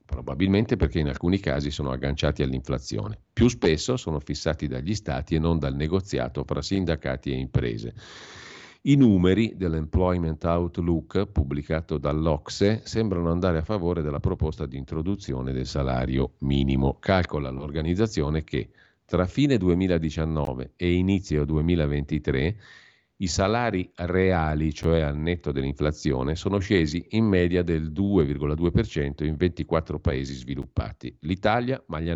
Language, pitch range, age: Italian, 75-95 Hz, 50-69